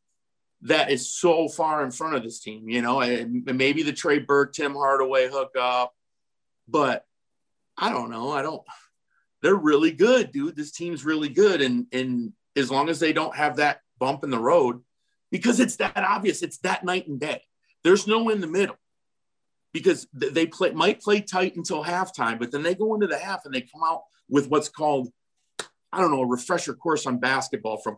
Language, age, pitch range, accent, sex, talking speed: English, 50-69, 125-175 Hz, American, male, 195 wpm